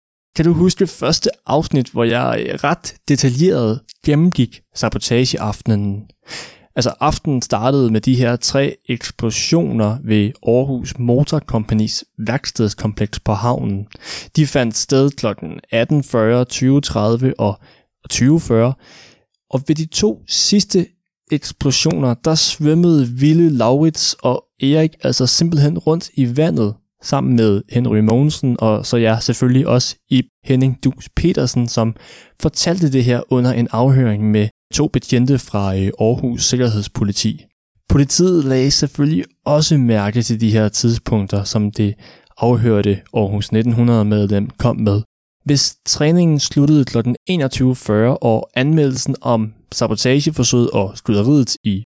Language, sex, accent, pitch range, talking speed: Danish, male, native, 110-140 Hz, 125 wpm